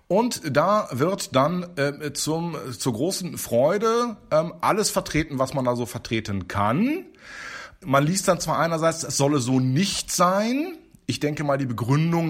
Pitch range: 120-155 Hz